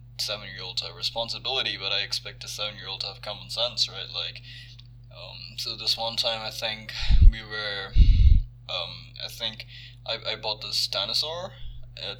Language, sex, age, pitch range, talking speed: English, male, 20-39, 110-125 Hz, 180 wpm